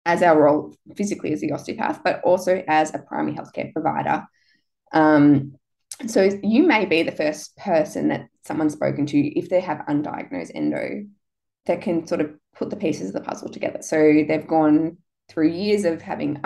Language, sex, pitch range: English, female, 145-200 Hz